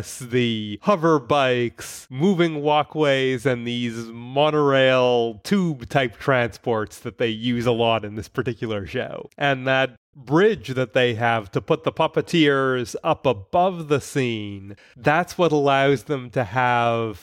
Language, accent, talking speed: English, American, 135 wpm